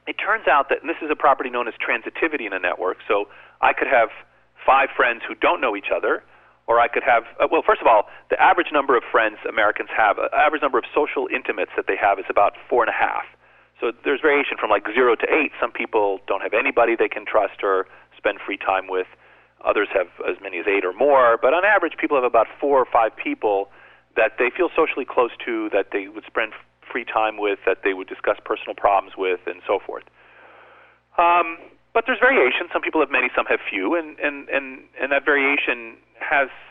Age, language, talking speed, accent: 40-59, English, 220 wpm, American